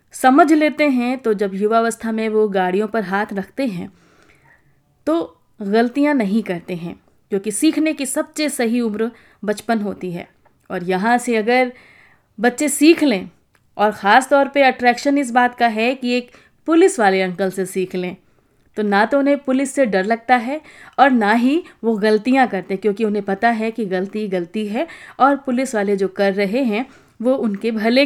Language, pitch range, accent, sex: Hindi, 205-260 Hz, native, female